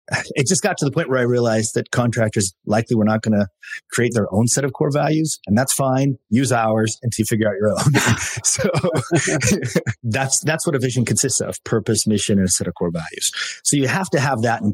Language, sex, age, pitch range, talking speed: English, male, 30-49, 105-145 Hz, 230 wpm